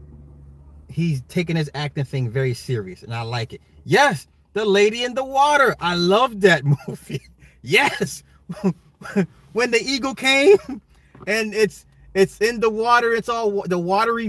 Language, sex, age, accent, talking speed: English, male, 30-49, American, 155 wpm